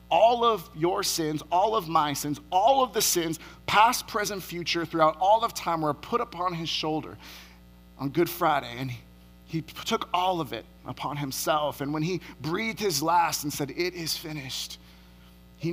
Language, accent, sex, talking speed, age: English, American, male, 185 wpm, 30-49